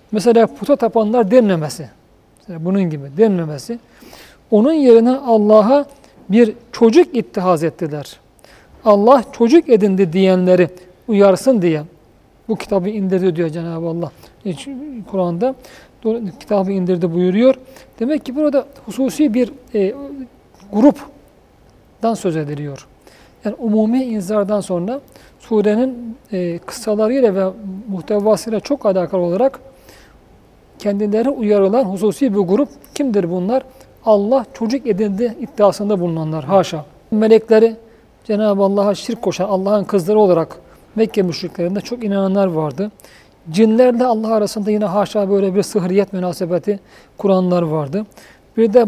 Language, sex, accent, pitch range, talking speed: Turkish, male, native, 185-230 Hz, 110 wpm